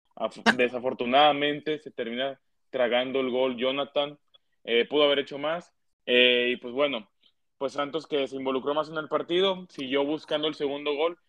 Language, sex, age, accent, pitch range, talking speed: Spanish, male, 20-39, Mexican, 125-145 Hz, 160 wpm